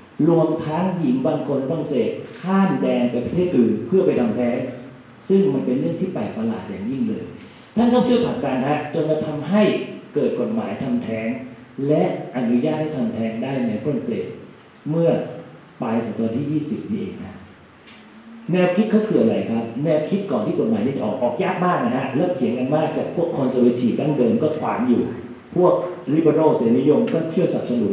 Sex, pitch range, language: male, 125-180 Hz, Thai